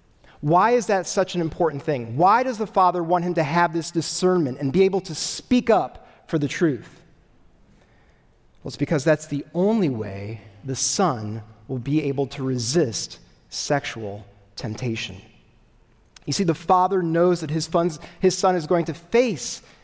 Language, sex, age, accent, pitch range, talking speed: English, male, 30-49, American, 130-185 Hz, 165 wpm